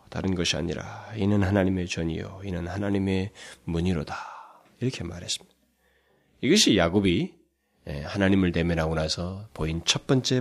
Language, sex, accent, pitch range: Korean, male, native, 85-125 Hz